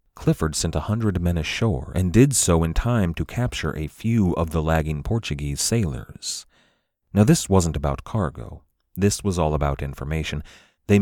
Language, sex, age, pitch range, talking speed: English, male, 30-49, 75-95 Hz, 170 wpm